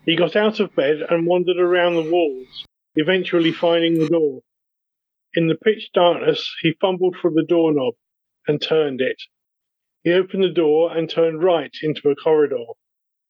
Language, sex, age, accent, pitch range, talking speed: English, male, 40-59, British, 160-185 Hz, 165 wpm